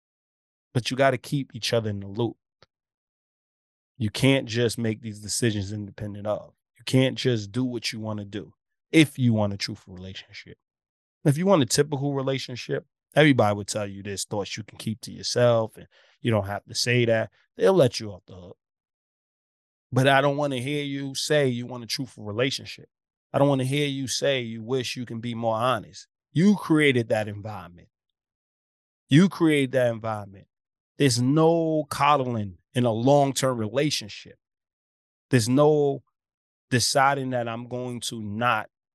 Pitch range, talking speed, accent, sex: 105-135 Hz, 175 wpm, American, male